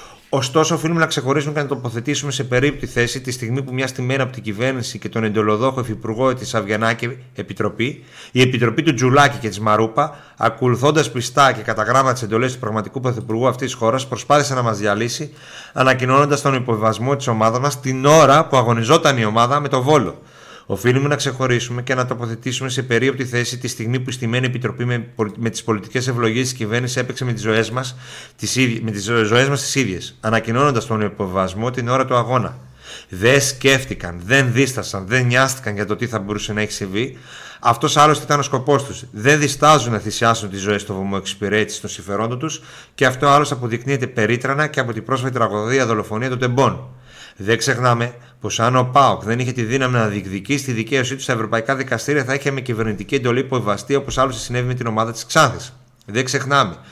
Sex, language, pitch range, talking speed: male, Greek, 110-135 Hz, 190 wpm